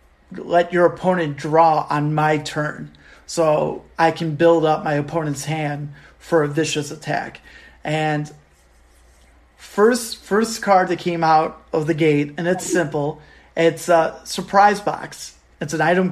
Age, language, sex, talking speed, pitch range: 30-49, English, male, 145 wpm, 150-180 Hz